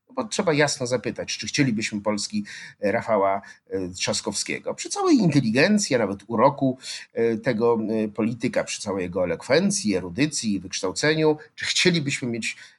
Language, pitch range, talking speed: Polish, 105-145 Hz, 120 wpm